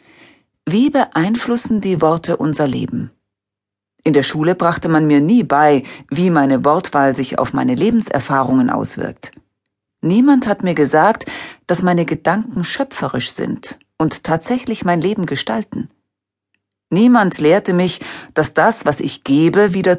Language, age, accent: German, 40-59, German